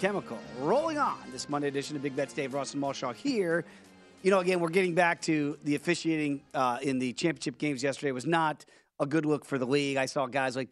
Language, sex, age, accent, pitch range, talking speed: English, male, 40-59, American, 140-215 Hz, 235 wpm